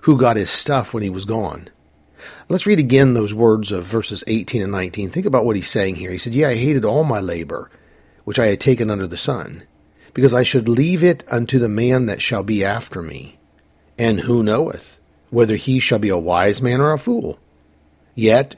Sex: male